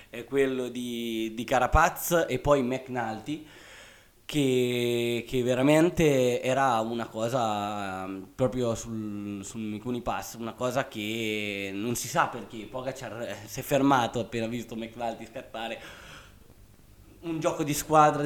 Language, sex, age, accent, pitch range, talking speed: Italian, male, 20-39, native, 110-135 Hz, 120 wpm